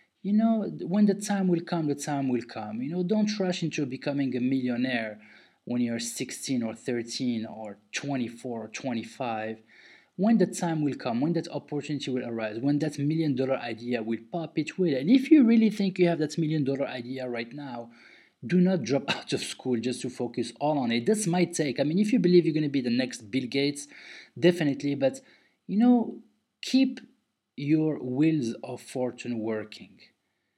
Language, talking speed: English, 190 wpm